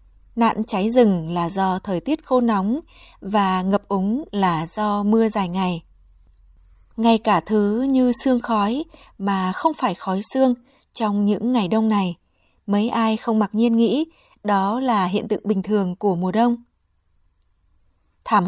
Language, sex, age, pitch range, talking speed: Vietnamese, female, 20-39, 185-230 Hz, 160 wpm